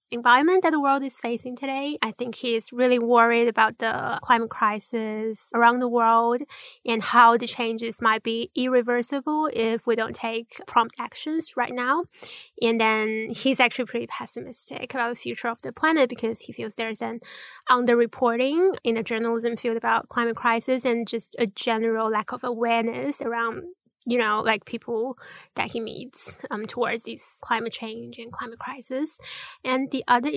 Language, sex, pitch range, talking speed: English, female, 225-255 Hz, 170 wpm